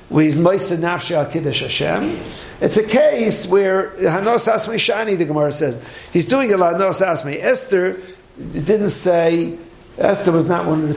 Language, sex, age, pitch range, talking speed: English, male, 50-69, 150-205 Hz, 140 wpm